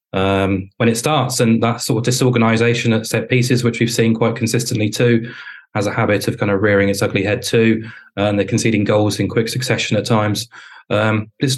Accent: British